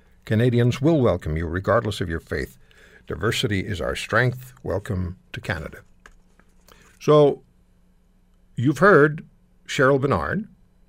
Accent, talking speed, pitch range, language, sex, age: American, 110 wpm, 95-150 Hz, English, male, 60-79